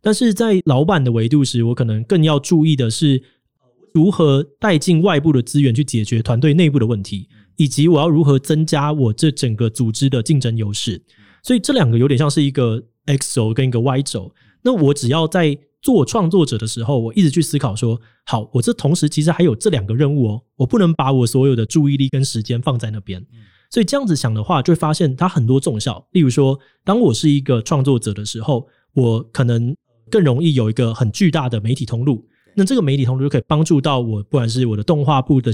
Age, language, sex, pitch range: 20-39, Chinese, male, 120-155 Hz